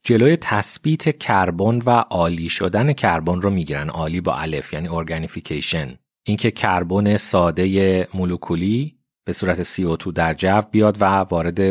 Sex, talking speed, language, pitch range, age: male, 145 wpm, Persian, 80-105 Hz, 30-49